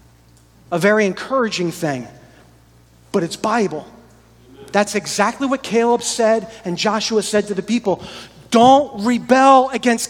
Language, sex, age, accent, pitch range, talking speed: English, male, 40-59, American, 170-240 Hz, 125 wpm